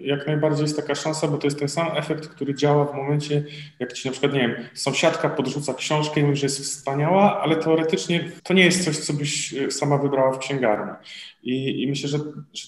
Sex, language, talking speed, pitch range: male, Polish, 220 wpm, 125-145 Hz